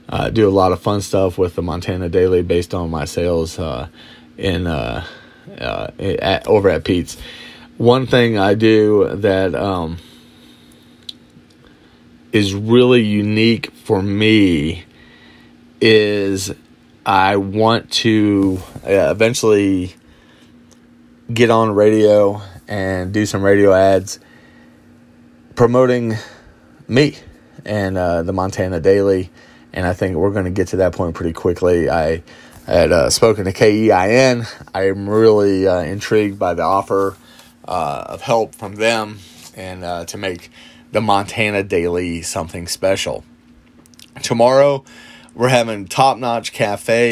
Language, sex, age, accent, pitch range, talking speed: English, male, 30-49, American, 85-110 Hz, 130 wpm